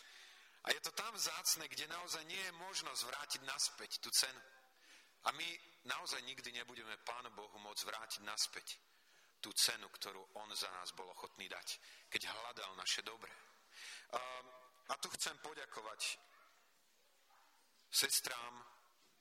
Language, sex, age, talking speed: Slovak, male, 40-59, 130 wpm